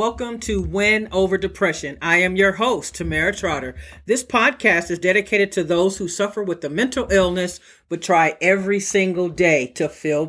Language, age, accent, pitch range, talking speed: English, 50-69, American, 165-210 Hz, 175 wpm